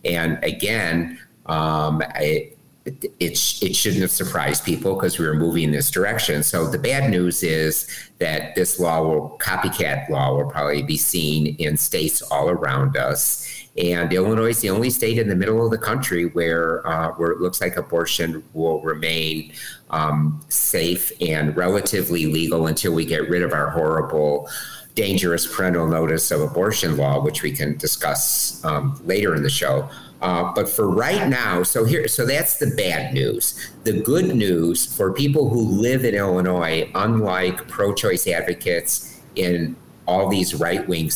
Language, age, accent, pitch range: English, 50-69, American, 75-95 Hz